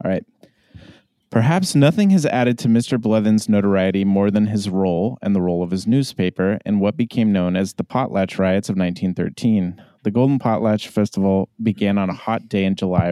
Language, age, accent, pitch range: English, 30-49, American, 95-115 Hz